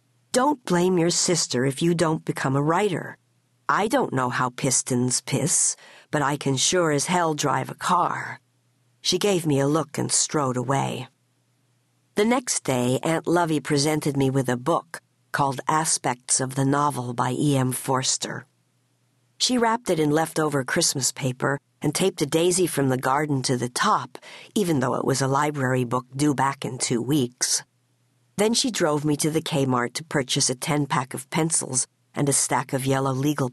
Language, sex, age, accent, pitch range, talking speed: English, female, 50-69, American, 130-160 Hz, 180 wpm